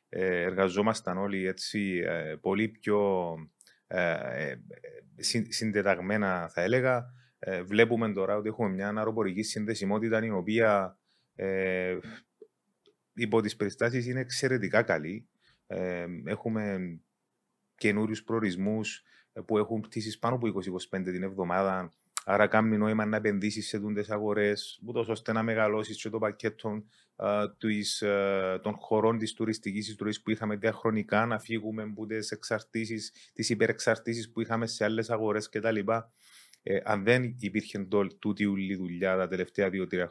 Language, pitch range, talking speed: Greek, 100-115 Hz, 120 wpm